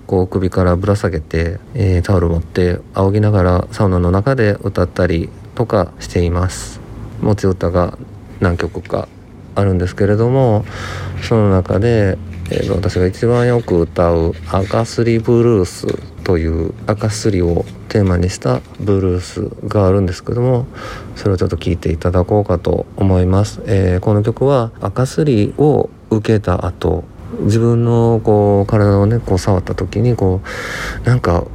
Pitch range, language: 90-110 Hz, Japanese